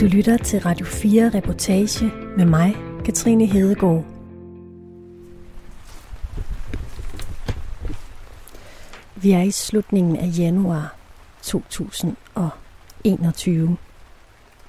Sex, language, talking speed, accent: female, Danish, 70 wpm, native